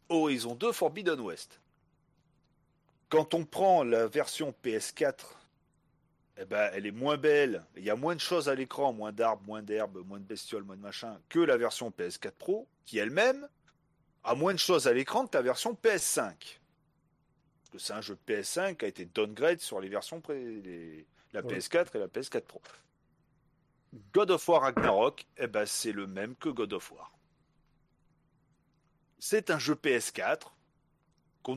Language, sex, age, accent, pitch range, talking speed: French, male, 40-59, French, 105-165 Hz, 160 wpm